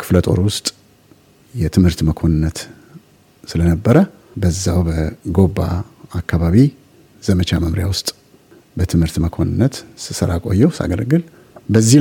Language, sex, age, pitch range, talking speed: Amharic, male, 60-79, 90-115 Hz, 85 wpm